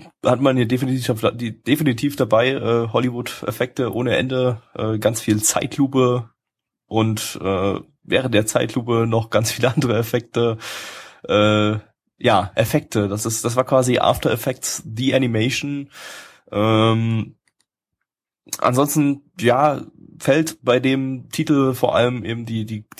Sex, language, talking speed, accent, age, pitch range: male, German, 130 wpm, German, 20-39, 105-125 Hz